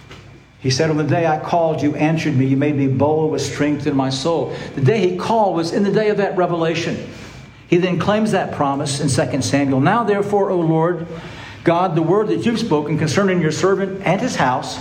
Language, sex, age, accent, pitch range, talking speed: English, male, 60-79, American, 125-170 Hz, 220 wpm